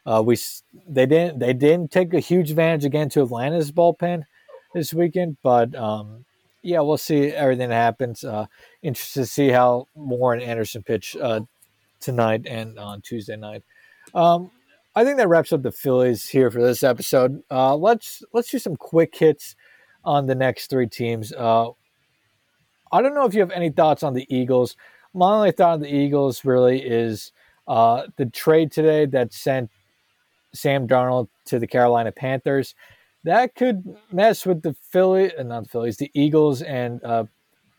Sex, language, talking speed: male, English, 170 wpm